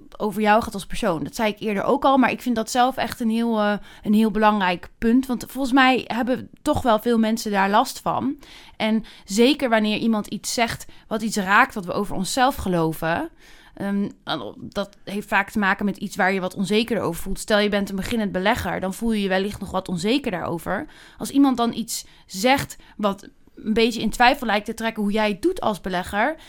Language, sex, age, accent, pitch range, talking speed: Dutch, female, 20-39, Dutch, 205-260 Hz, 220 wpm